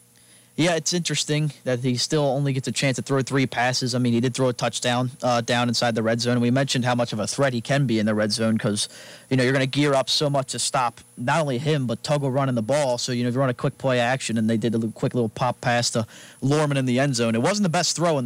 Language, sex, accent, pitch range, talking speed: English, male, American, 115-135 Hz, 300 wpm